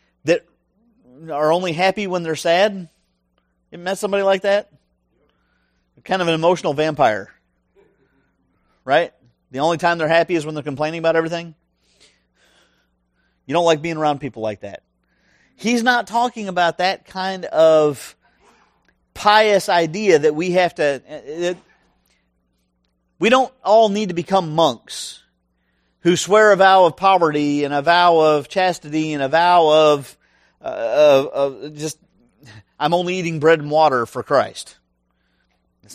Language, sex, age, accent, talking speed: English, male, 40-59, American, 145 wpm